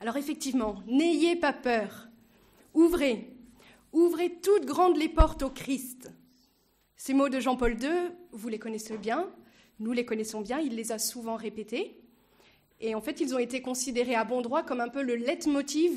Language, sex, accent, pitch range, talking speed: French, female, French, 230-295 Hz, 175 wpm